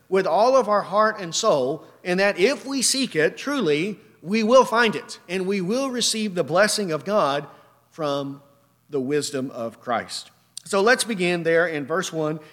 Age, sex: 40-59, male